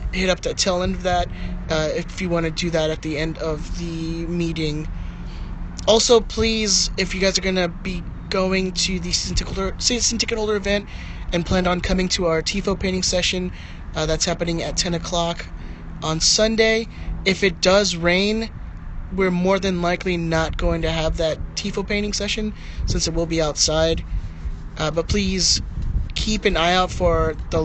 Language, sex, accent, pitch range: English, male, American, 160-185 Hz